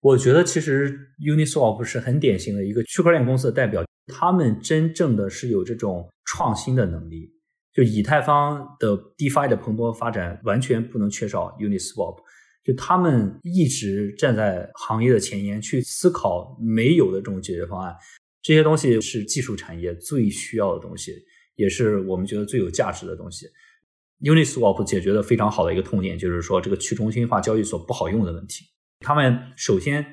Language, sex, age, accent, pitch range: Chinese, male, 20-39, native, 105-145 Hz